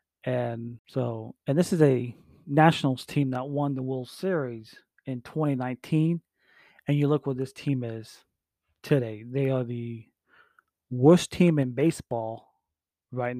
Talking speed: 140 wpm